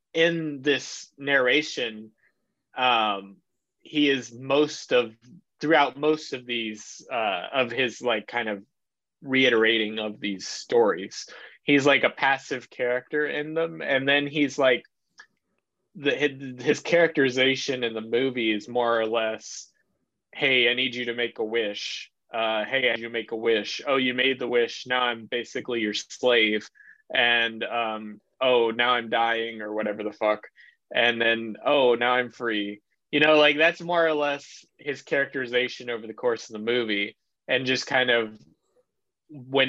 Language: English